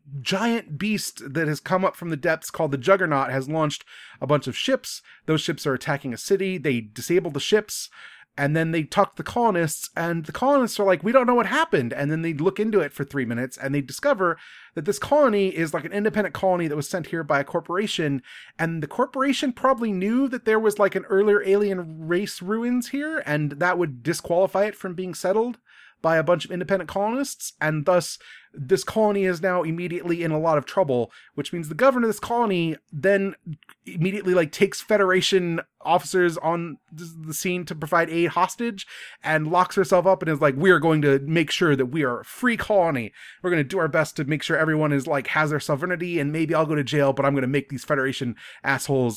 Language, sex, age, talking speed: English, male, 30-49, 220 wpm